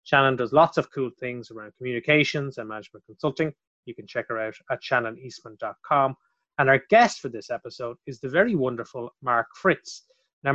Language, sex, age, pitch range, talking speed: English, male, 30-49, 125-160 Hz, 175 wpm